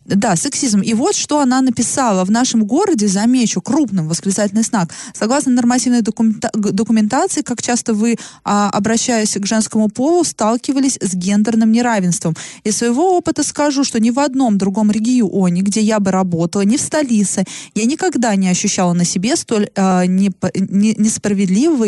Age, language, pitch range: 20-39, Russian, 195-255 Hz